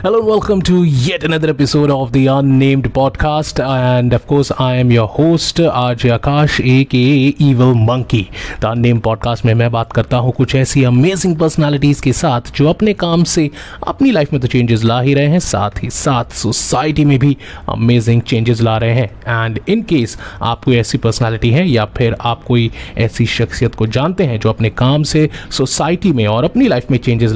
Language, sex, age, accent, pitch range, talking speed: Hindi, male, 30-49, native, 120-155 Hz, 195 wpm